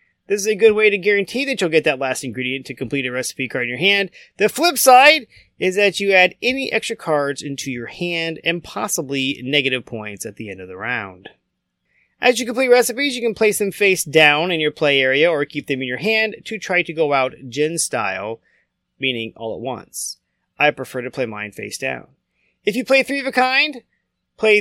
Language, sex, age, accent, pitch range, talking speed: English, male, 30-49, American, 135-210 Hz, 220 wpm